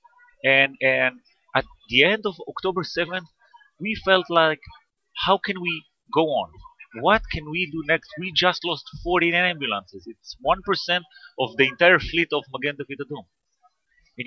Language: English